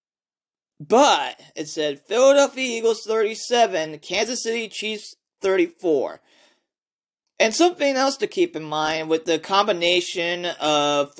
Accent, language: American, English